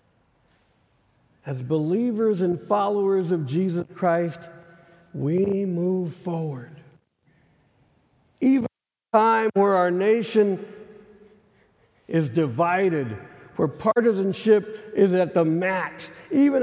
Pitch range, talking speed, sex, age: 145-200 Hz, 95 wpm, male, 60-79